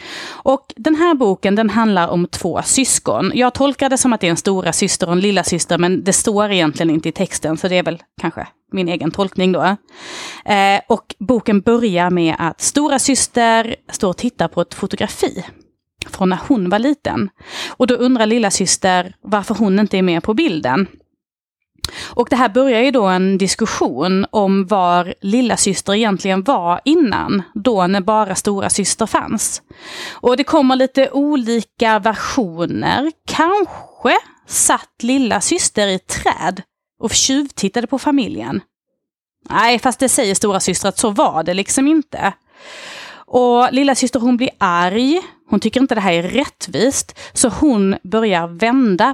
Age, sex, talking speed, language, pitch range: 30-49, female, 165 wpm, Swedish, 190-265 Hz